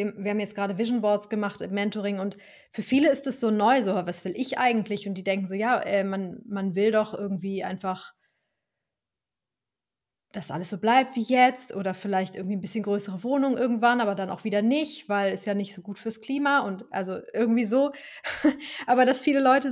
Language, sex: German, female